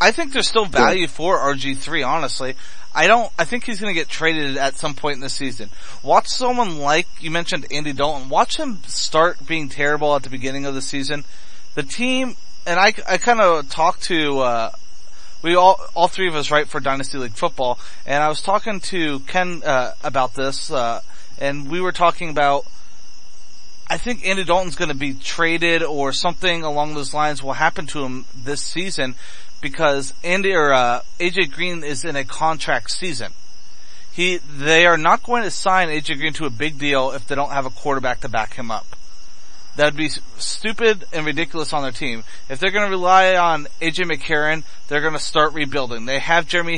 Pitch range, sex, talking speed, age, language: 140-175 Hz, male, 190 wpm, 30-49, English